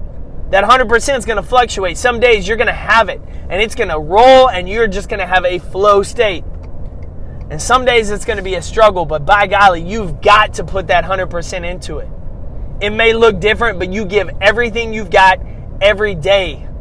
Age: 30-49